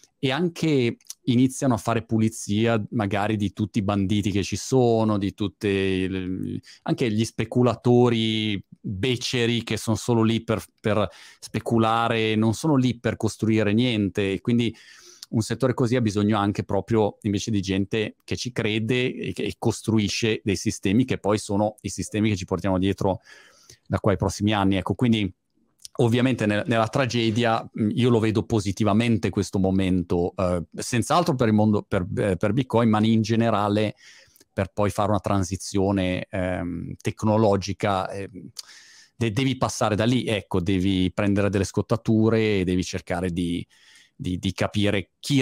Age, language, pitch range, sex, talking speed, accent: 30-49, Italian, 100-115 Hz, male, 150 wpm, native